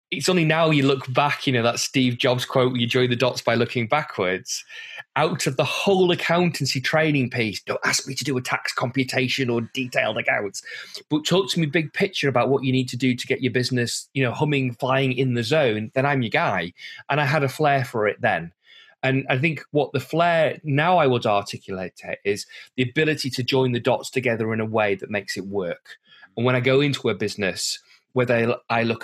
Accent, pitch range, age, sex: British, 120-150 Hz, 20-39, male